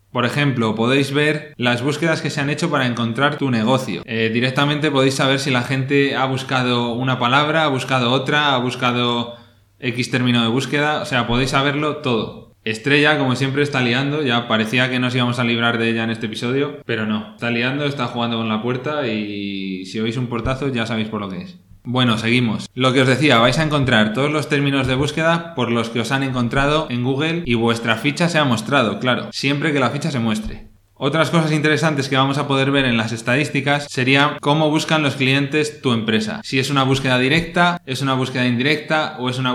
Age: 20-39